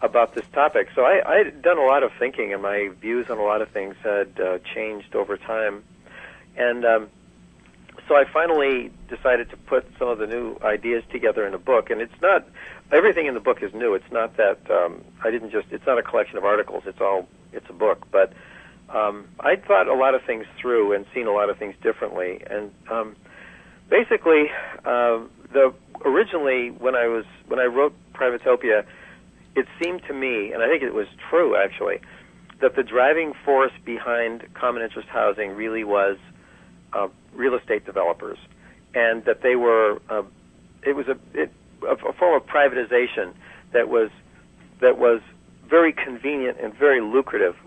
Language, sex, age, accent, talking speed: English, male, 50-69, American, 180 wpm